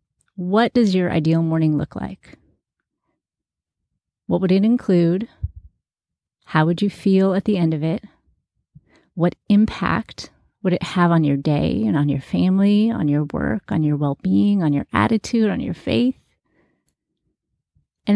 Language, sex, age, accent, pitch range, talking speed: English, female, 30-49, American, 165-210 Hz, 150 wpm